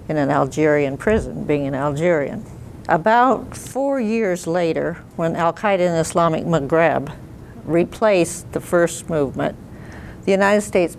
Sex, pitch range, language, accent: female, 155-190 Hz, English, American